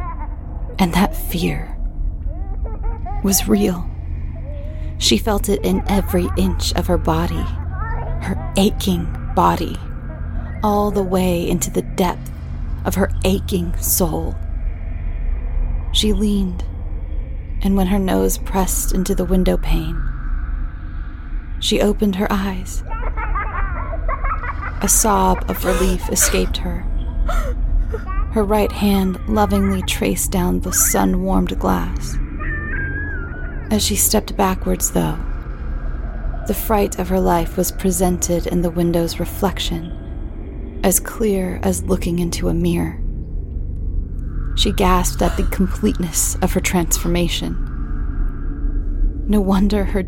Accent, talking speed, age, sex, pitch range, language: American, 110 wpm, 30-49, female, 75-95 Hz, English